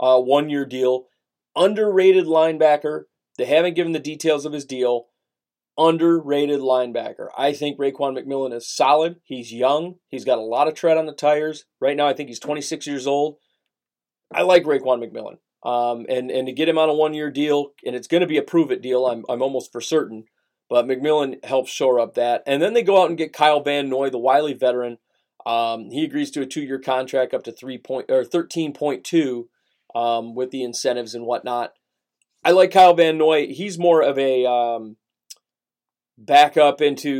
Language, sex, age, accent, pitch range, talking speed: English, male, 30-49, American, 125-150 Hz, 195 wpm